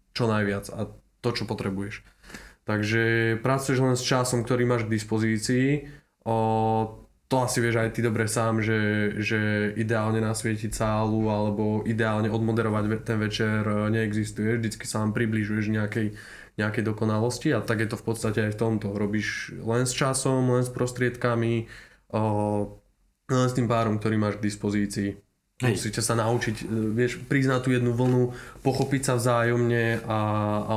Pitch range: 105-120 Hz